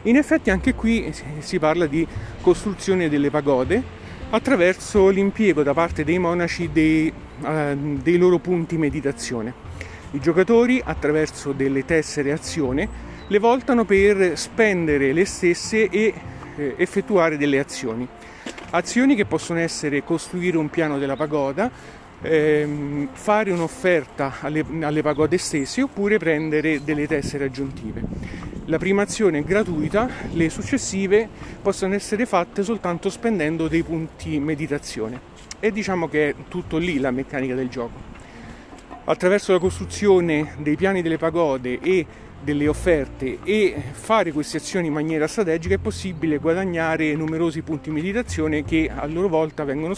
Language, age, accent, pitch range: Italian, 40-59, native, 145-185 Hz